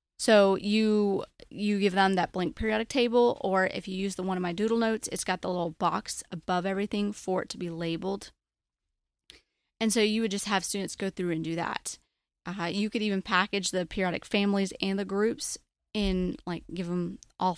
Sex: female